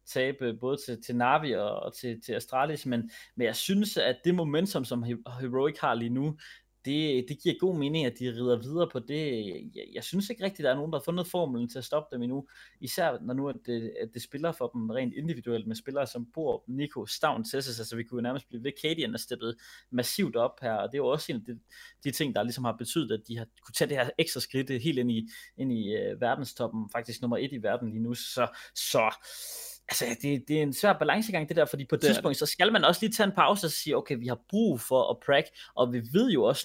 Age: 20-39